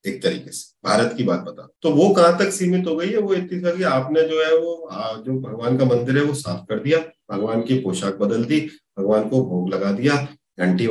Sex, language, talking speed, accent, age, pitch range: male, Hindi, 235 wpm, native, 40-59, 125-175 Hz